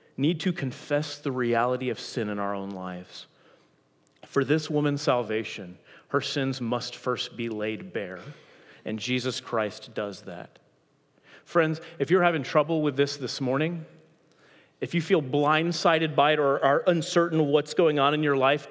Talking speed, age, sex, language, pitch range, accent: 165 wpm, 30-49, male, English, 135-180 Hz, American